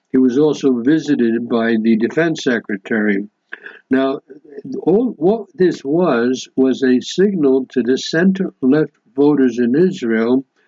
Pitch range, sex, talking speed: 125-150 Hz, male, 125 wpm